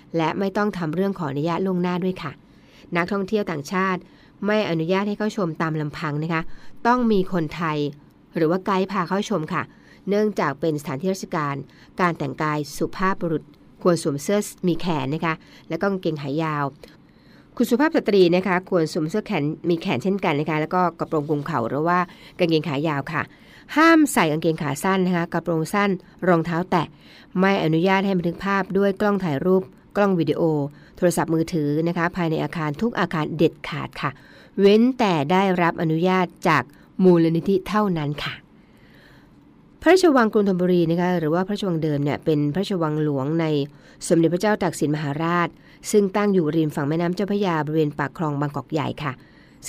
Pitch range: 155-195 Hz